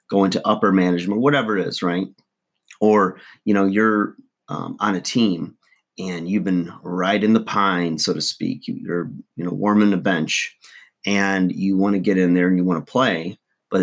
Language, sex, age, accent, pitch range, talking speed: English, male, 30-49, American, 90-105 Hz, 195 wpm